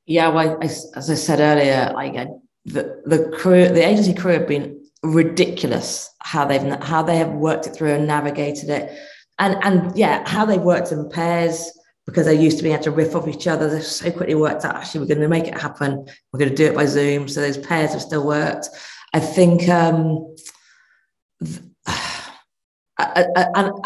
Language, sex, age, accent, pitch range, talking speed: English, female, 40-59, British, 155-175 Hz, 195 wpm